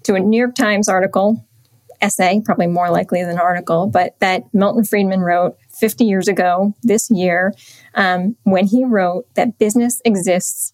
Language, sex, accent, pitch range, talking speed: English, female, American, 185-230 Hz, 170 wpm